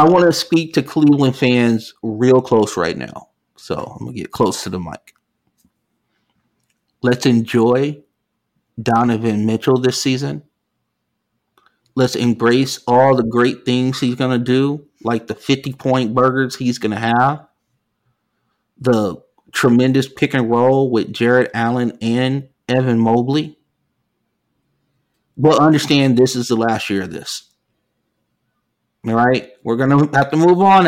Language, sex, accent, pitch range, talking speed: English, male, American, 115-140 Hz, 140 wpm